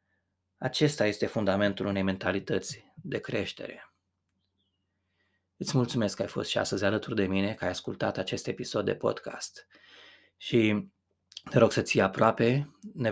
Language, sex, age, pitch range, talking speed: Romanian, male, 20-39, 95-115 Hz, 135 wpm